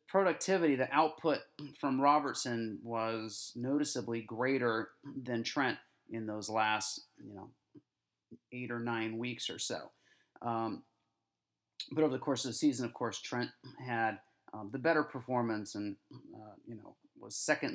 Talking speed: 145 wpm